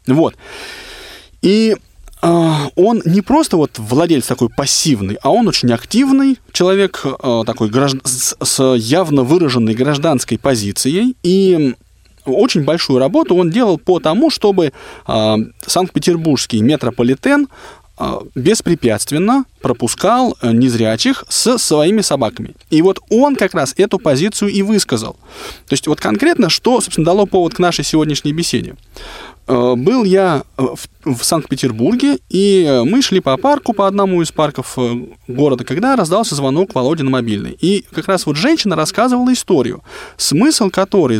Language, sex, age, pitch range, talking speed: Russian, male, 20-39, 130-205 Hz, 130 wpm